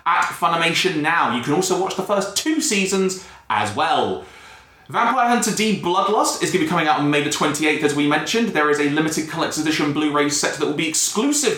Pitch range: 145-190 Hz